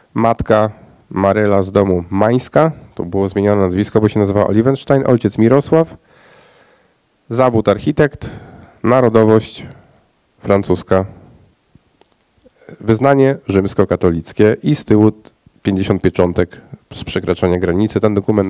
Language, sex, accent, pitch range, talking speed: Polish, male, native, 100-125 Hz, 95 wpm